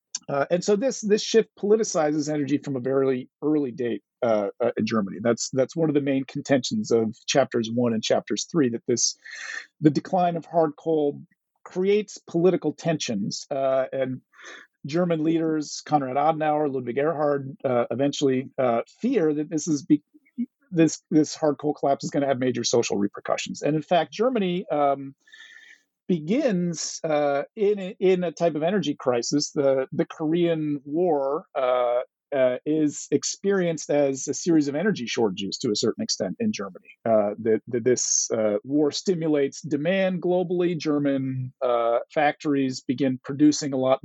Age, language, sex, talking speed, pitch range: 40-59, English, male, 160 wpm, 135-170 Hz